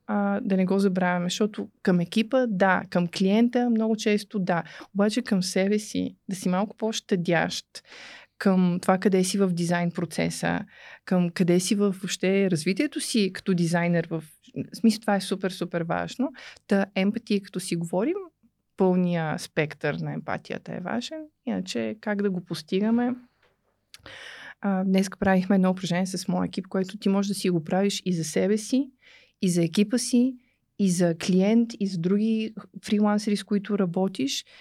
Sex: female